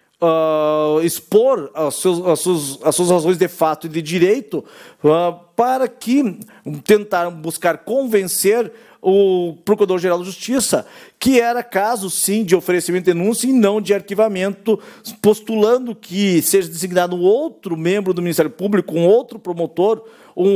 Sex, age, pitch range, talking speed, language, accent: male, 50-69, 170-220 Hz, 145 wpm, Portuguese, Brazilian